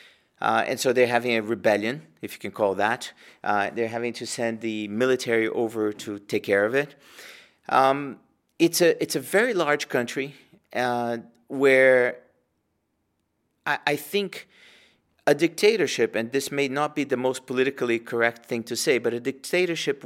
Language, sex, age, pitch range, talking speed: English, male, 40-59, 120-145 Hz, 165 wpm